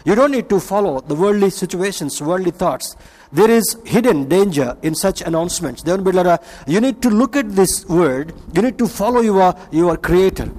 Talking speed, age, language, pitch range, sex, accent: 185 wpm, 50-69, Telugu, 170-215 Hz, male, native